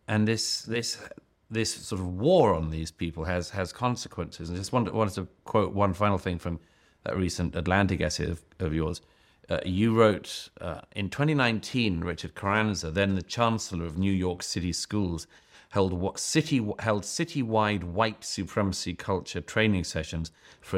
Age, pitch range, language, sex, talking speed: 40-59, 90-110 Hz, English, male, 165 wpm